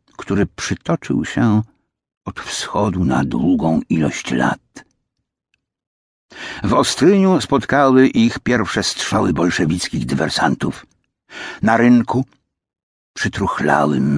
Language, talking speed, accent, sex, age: Polish, 85 wpm, native, male, 60-79